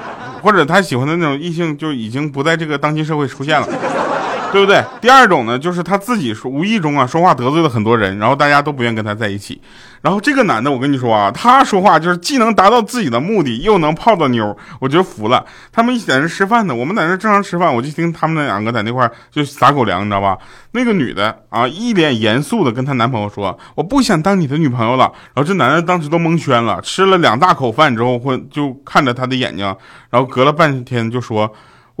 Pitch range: 125-190 Hz